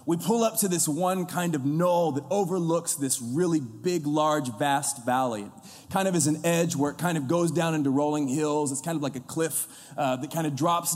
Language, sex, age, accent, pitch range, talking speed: English, male, 30-49, American, 135-170 Hz, 230 wpm